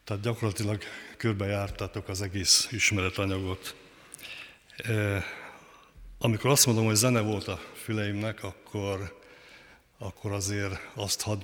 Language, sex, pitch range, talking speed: Hungarian, male, 95-105 Hz, 100 wpm